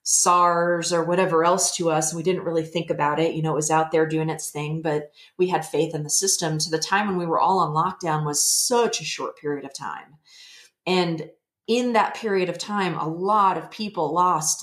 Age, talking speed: 30-49, 235 wpm